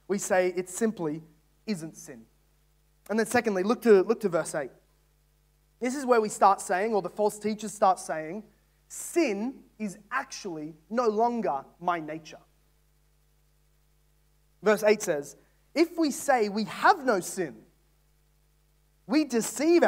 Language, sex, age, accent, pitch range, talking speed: English, male, 20-39, Australian, 175-230 Hz, 140 wpm